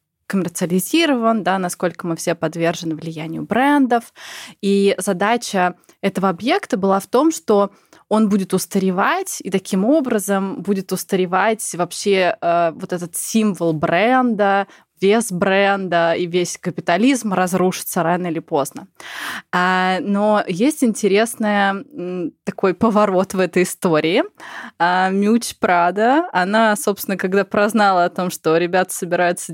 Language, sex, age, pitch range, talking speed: Russian, female, 20-39, 180-220 Hz, 120 wpm